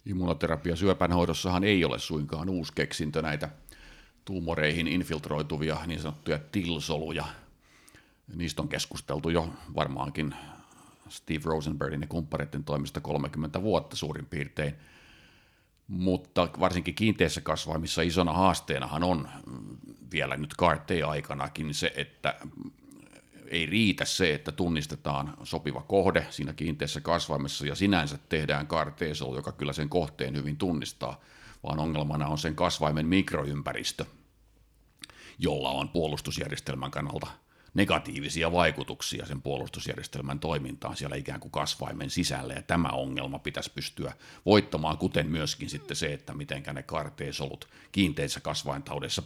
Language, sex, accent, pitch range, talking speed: Finnish, male, native, 75-85 Hz, 115 wpm